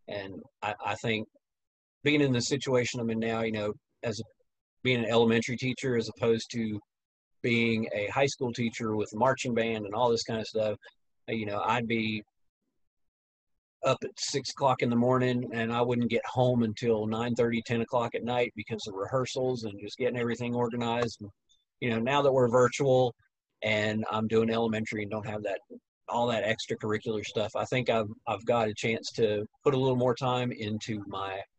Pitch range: 105-120 Hz